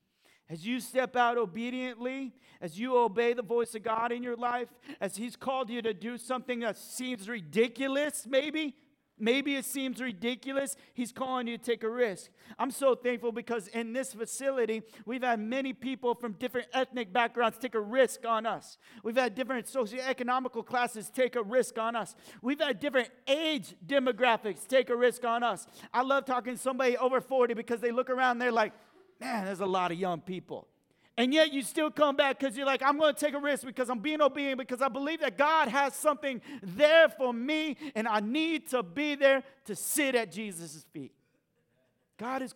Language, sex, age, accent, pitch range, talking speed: English, male, 40-59, American, 225-265 Hz, 195 wpm